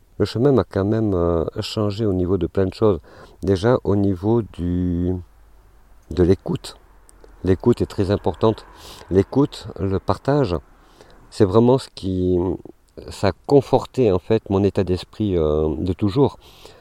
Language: French